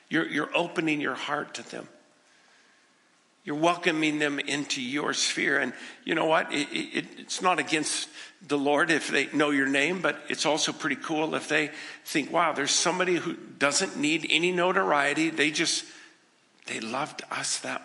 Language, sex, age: English, male, 50-69